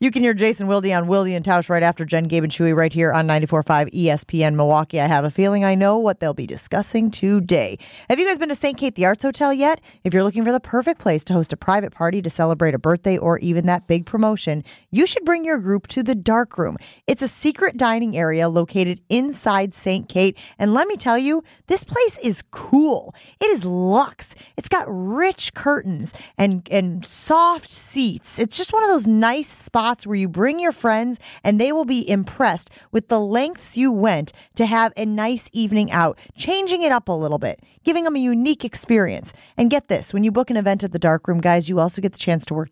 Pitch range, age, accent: 175-245 Hz, 30-49, American